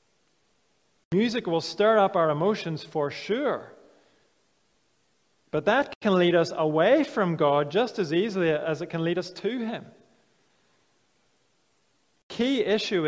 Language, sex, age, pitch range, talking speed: English, male, 30-49, 155-205 Hz, 130 wpm